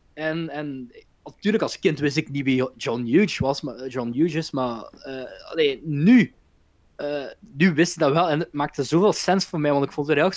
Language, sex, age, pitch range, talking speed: Dutch, male, 20-39, 130-175 Hz, 210 wpm